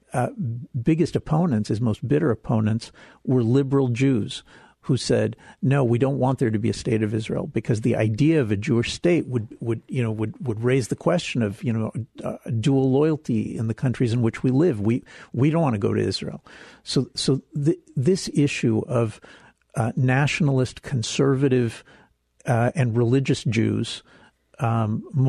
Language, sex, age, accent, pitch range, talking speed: English, male, 50-69, American, 115-135 Hz, 175 wpm